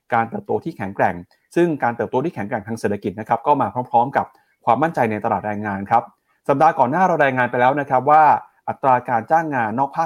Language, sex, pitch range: Thai, male, 115-155 Hz